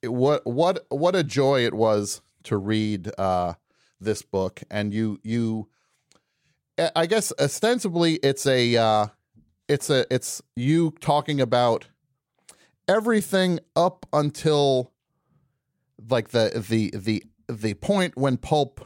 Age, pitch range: 40-59, 110-155 Hz